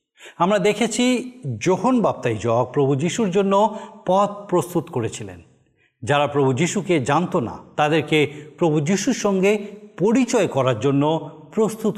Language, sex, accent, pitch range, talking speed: Bengali, male, native, 140-205 Hz, 120 wpm